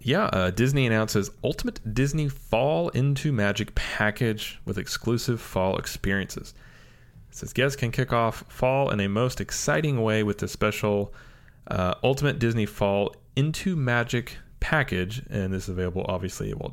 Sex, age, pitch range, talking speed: male, 30-49, 100-130 Hz, 155 wpm